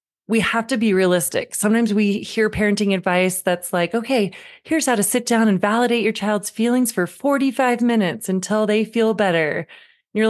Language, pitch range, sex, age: English, 195-255 Hz, female, 30-49